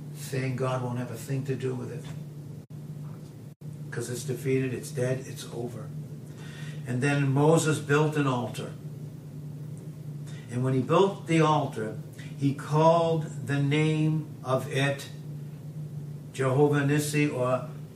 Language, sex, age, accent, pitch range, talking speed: English, male, 60-79, American, 140-150 Hz, 125 wpm